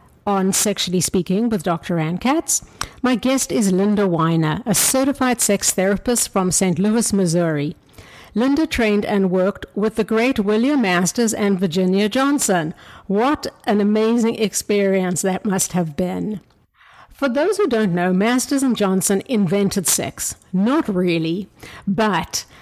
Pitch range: 185-240 Hz